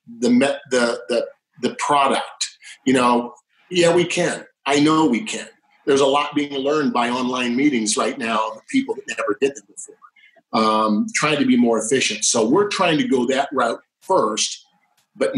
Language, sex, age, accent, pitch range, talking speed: English, male, 40-59, American, 120-170 Hz, 180 wpm